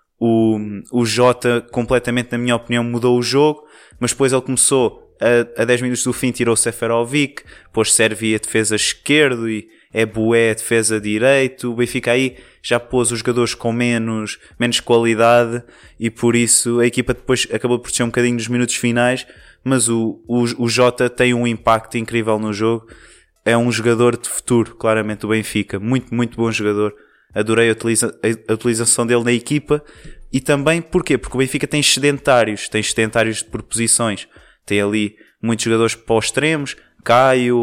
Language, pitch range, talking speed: Portuguese, 110-125 Hz, 175 wpm